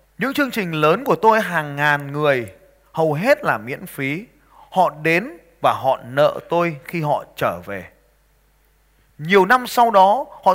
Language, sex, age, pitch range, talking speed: Vietnamese, male, 20-39, 155-225 Hz, 165 wpm